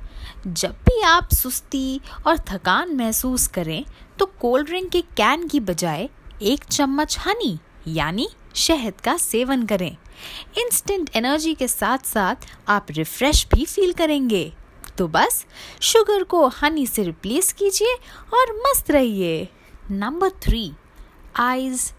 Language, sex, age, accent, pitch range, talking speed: Hindi, female, 20-39, native, 190-295 Hz, 130 wpm